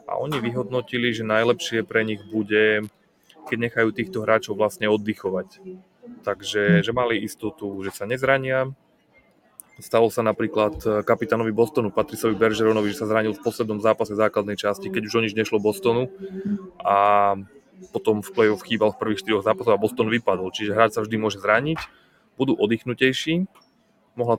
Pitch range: 105-120 Hz